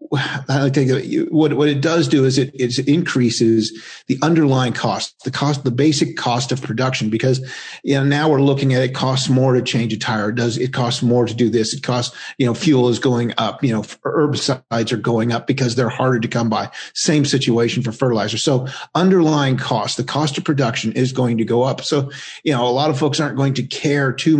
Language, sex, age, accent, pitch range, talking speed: English, male, 40-59, American, 115-140 Hz, 220 wpm